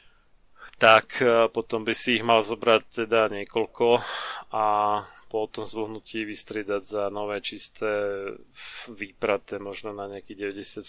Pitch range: 100-115 Hz